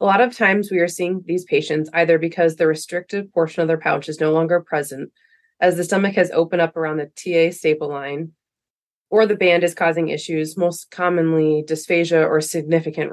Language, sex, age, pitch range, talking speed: English, female, 20-39, 155-180 Hz, 195 wpm